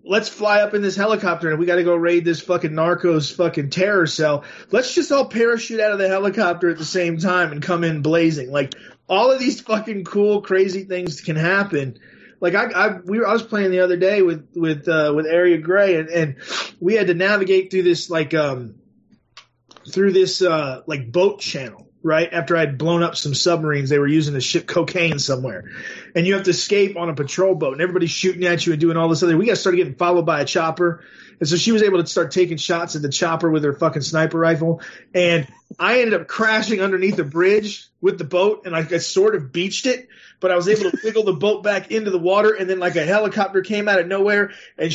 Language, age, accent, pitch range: English, 20-39, American, 165-205 Hz